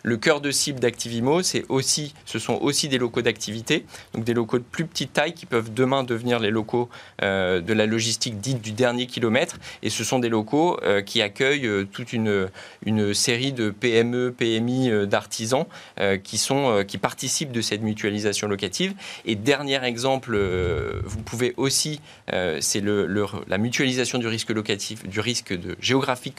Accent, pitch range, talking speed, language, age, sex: French, 105-135 Hz, 185 wpm, French, 20-39, male